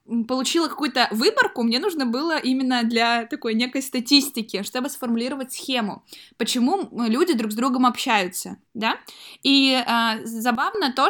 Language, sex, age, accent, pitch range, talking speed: Russian, female, 20-39, native, 230-275 Hz, 135 wpm